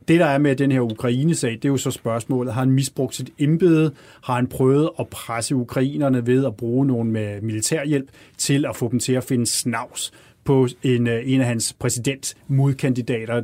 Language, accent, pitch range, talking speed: Danish, native, 115-140 Hz, 190 wpm